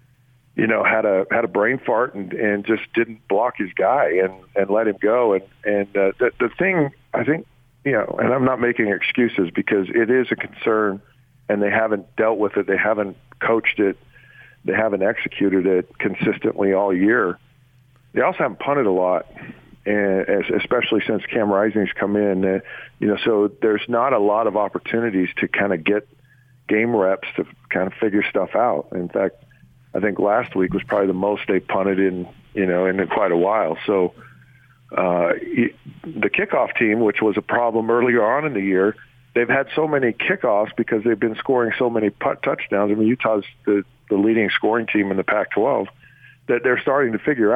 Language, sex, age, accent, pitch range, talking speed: English, male, 50-69, American, 100-125 Hz, 190 wpm